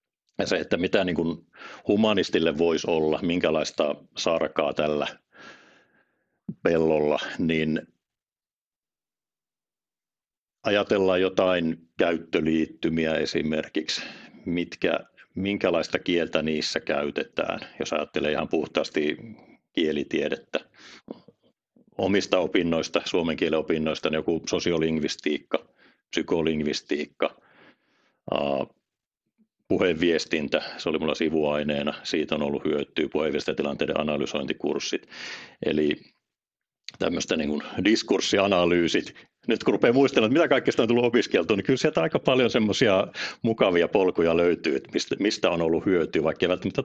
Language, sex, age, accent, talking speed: Finnish, male, 60-79, native, 95 wpm